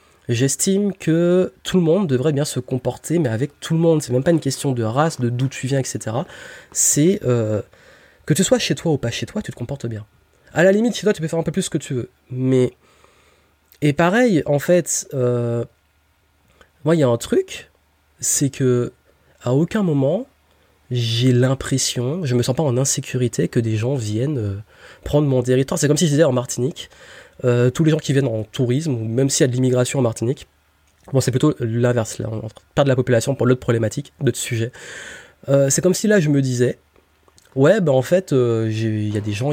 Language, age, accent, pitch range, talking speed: French, 20-39, French, 115-150 Hz, 220 wpm